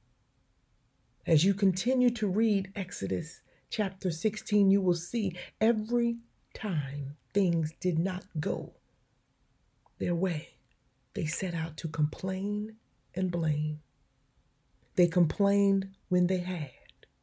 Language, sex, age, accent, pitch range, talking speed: English, female, 30-49, American, 170-205 Hz, 110 wpm